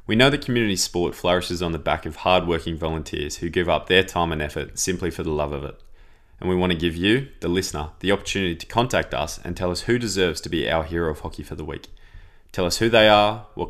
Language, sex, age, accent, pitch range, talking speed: English, male, 20-39, Australian, 80-95 Hz, 255 wpm